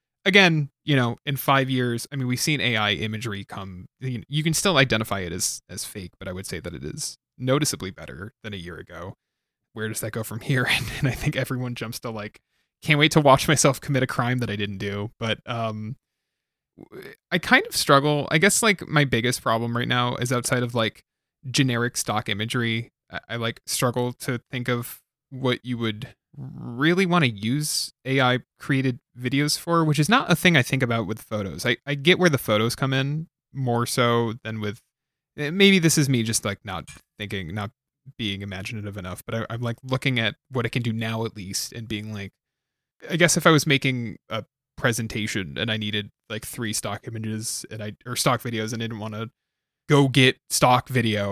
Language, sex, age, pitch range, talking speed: English, male, 20-39, 110-135 Hz, 205 wpm